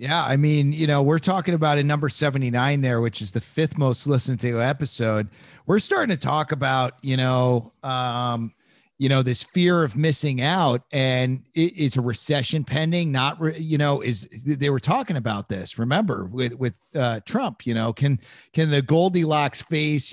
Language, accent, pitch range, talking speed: English, American, 125-150 Hz, 185 wpm